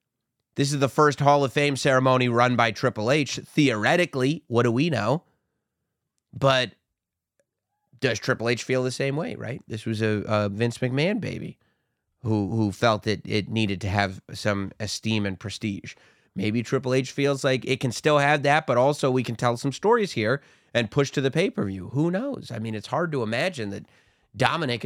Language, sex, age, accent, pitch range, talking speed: English, male, 30-49, American, 110-140 Hz, 190 wpm